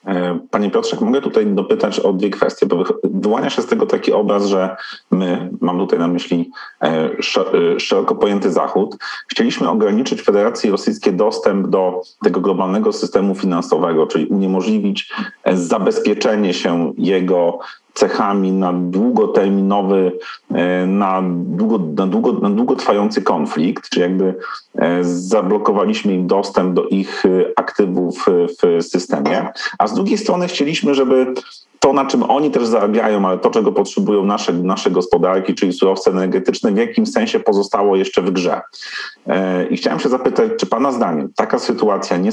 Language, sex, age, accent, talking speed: Polish, male, 40-59, native, 140 wpm